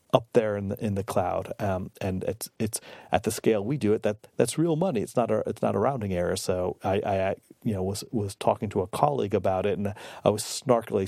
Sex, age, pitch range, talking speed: male, 40-59, 95-110 Hz, 255 wpm